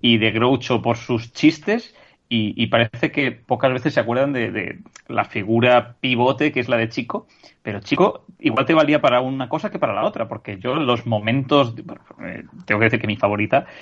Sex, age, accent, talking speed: male, 30-49, Spanish, 200 wpm